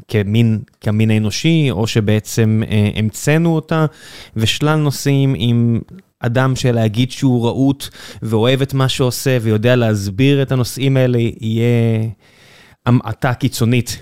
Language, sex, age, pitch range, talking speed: Hebrew, male, 20-39, 110-135 Hz, 115 wpm